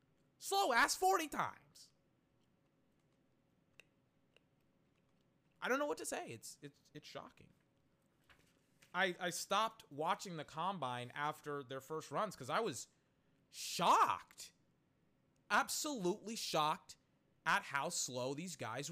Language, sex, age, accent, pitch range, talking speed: English, male, 30-49, American, 140-190 Hz, 110 wpm